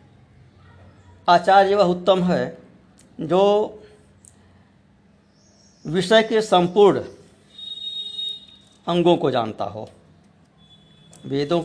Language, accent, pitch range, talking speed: Hindi, native, 115-190 Hz, 65 wpm